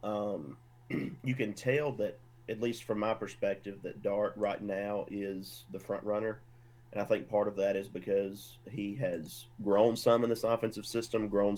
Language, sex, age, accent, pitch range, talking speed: English, male, 30-49, American, 100-120 Hz, 180 wpm